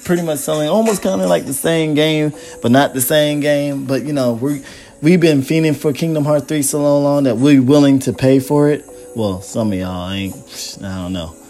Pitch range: 125-145 Hz